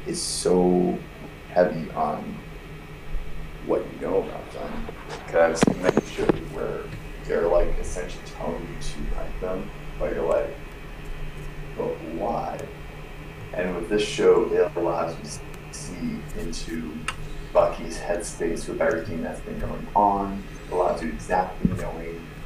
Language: English